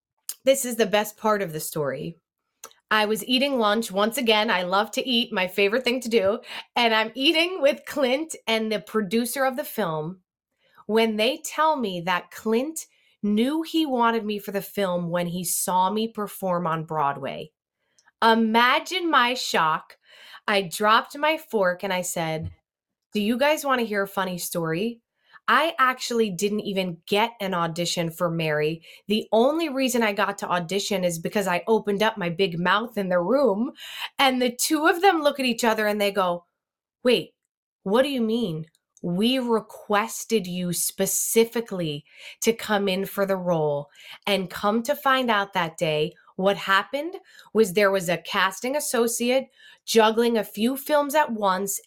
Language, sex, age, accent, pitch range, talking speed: English, female, 20-39, American, 185-245 Hz, 170 wpm